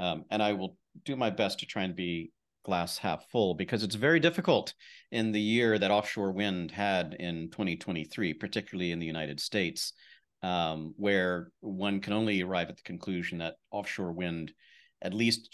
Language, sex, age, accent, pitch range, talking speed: English, male, 40-59, American, 85-105 Hz, 180 wpm